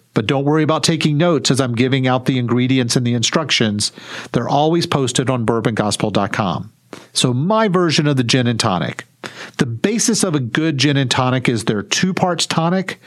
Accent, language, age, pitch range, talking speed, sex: American, English, 50-69, 125-160 Hz, 190 wpm, male